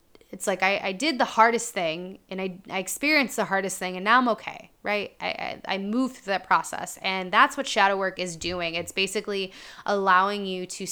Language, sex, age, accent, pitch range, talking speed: English, female, 20-39, American, 185-215 Hz, 215 wpm